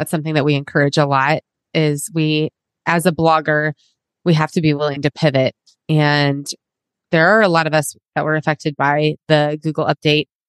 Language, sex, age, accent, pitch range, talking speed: English, female, 20-39, American, 150-175 Hz, 190 wpm